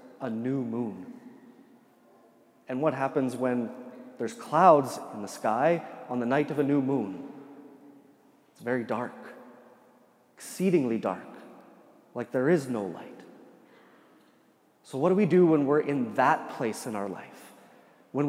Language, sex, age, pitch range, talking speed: English, male, 30-49, 125-160 Hz, 140 wpm